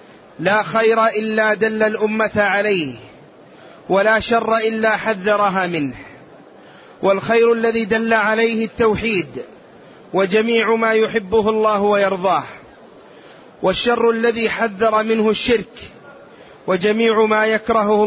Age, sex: 30-49, male